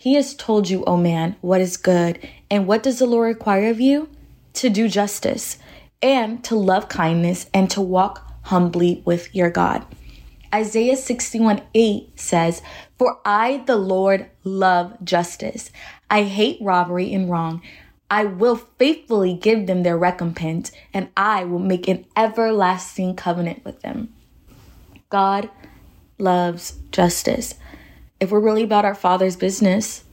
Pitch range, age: 175-210 Hz, 20-39